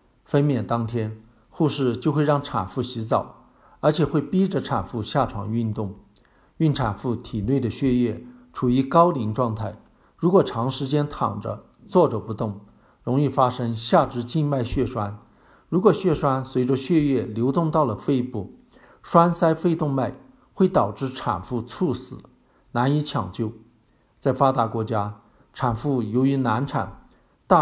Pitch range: 115-145 Hz